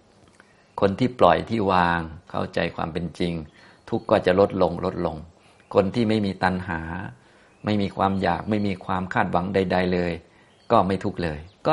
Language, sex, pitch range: Thai, male, 85-100 Hz